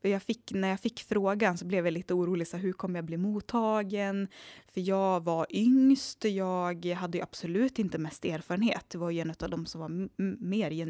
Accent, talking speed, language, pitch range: Swedish, 215 wpm, English, 170-200 Hz